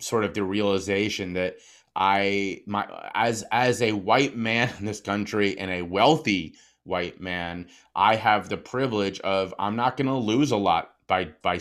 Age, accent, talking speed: 30-49, American, 175 wpm